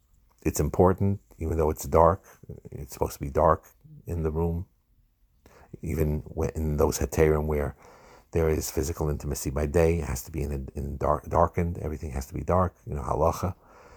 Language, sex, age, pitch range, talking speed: English, male, 50-69, 75-90 Hz, 175 wpm